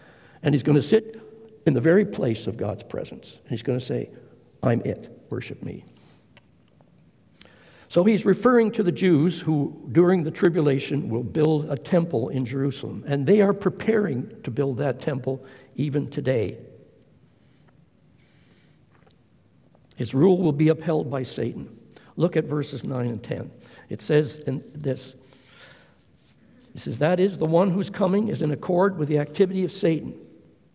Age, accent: 60-79, American